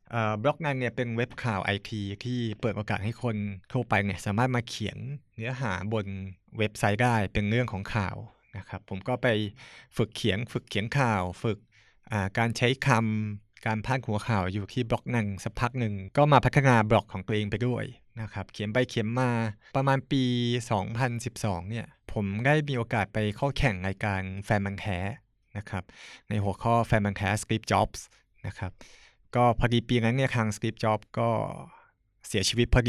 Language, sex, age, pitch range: Thai, male, 20-39, 105-125 Hz